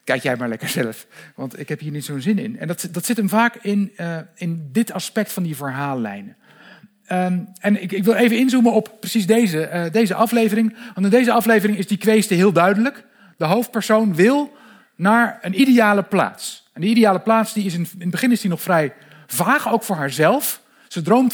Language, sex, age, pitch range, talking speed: Dutch, male, 50-69, 165-220 Hz, 200 wpm